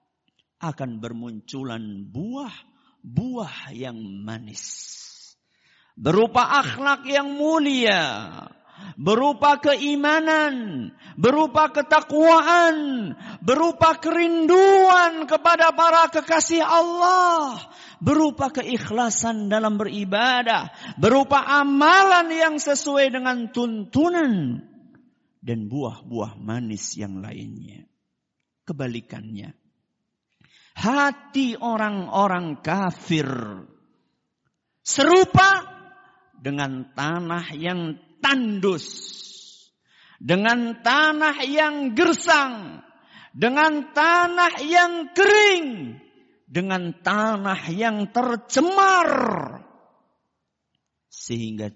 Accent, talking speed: native, 65 wpm